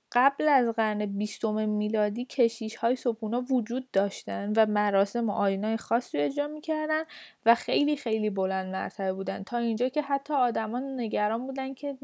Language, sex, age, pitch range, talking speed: Persian, female, 10-29, 210-265 Hz, 155 wpm